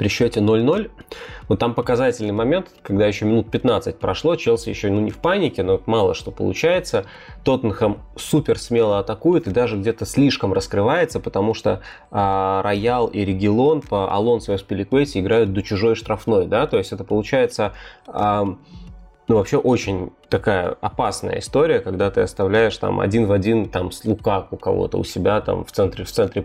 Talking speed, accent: 170 wpm, native